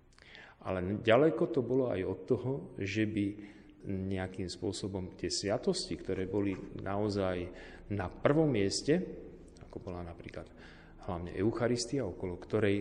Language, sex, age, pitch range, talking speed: Slovak, male, 40-59, 95-115 Hz, 120 wpm